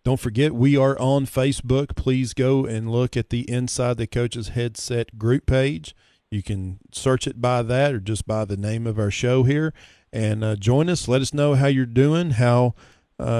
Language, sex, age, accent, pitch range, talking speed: English, male, 40-59, American, 110-130 Hz, 200 wpm